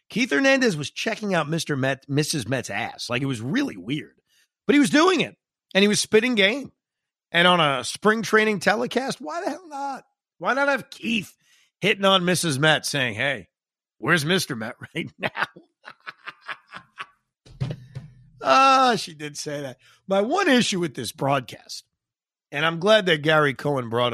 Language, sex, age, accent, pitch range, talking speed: English, male, 50-69, American, 125-195 Hz, 170 wpm